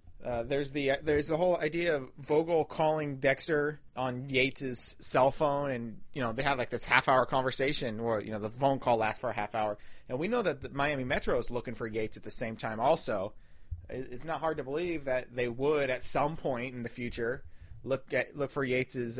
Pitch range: 120-155 Hz